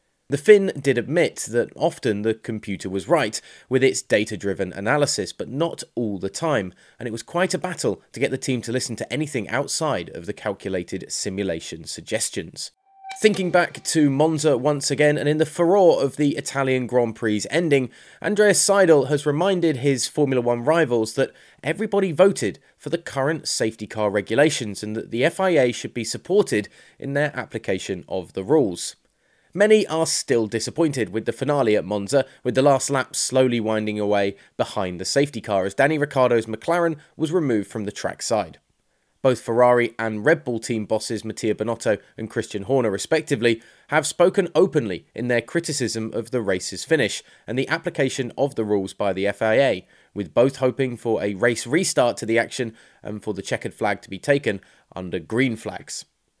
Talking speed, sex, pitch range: 180 wpm, male, 110-150 Hz